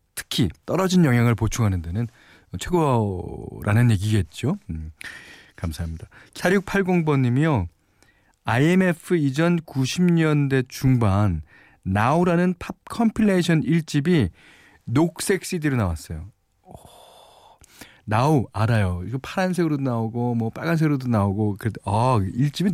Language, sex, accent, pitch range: Korean, male, native, 100-155 Hz